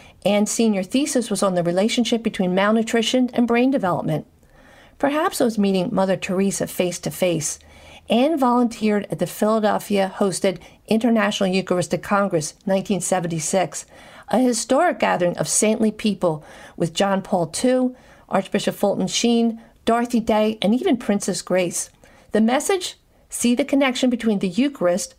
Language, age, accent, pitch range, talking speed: English, 50-69, American, 185-245 Hz, 130 wpm